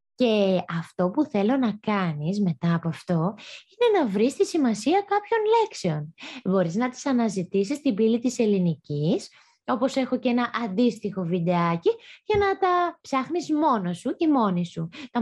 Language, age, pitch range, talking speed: Greek, 20-39, 185-295 Hz, 160 wpm